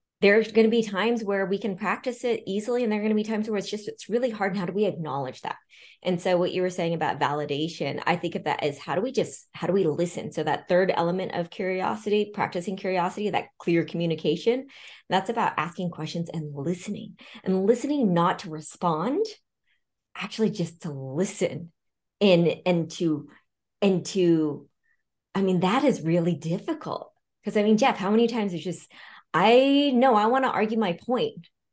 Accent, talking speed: American, 200 wpm